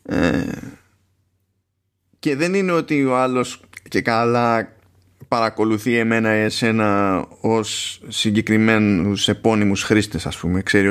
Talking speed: 105 wpm